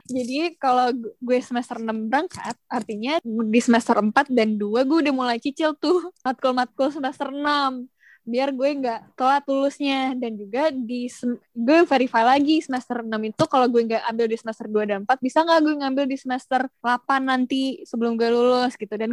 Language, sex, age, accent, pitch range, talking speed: Indonesian, female, 10-29, native, 230-275 Hz, 180 wpm